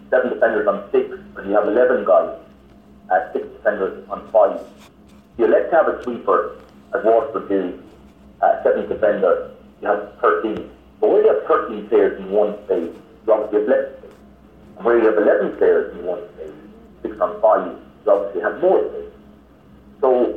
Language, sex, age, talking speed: English, male, 50-69, 185 wpm